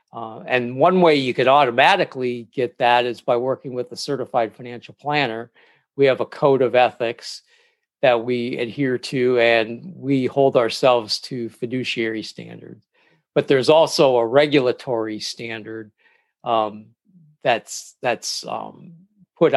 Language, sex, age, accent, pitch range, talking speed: English, male, 50-69, American, 115-145 Hz, 140 wpm